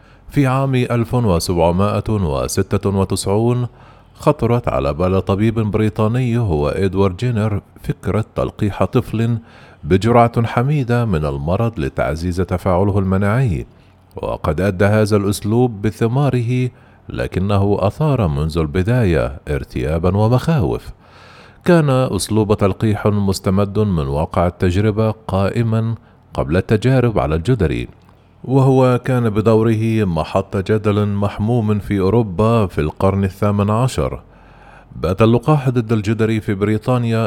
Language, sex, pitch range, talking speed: Arabic, male, 90-115 Hz, 100 wpm